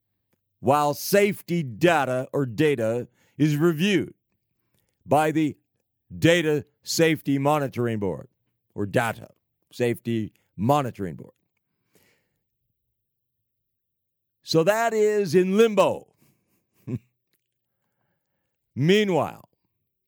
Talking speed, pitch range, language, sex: 70 wpm, 125-210 Hz, English, male